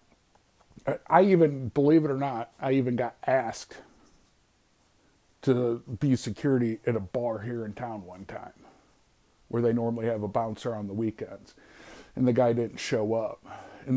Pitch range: 115-140 Hz